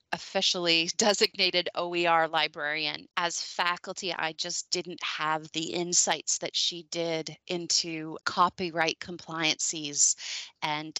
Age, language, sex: 20-39, English, female